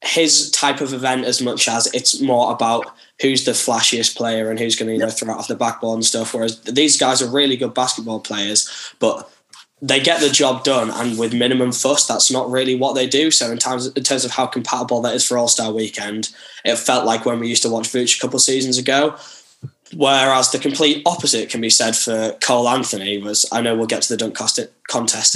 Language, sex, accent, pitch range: English, male, British, 110-130 Hz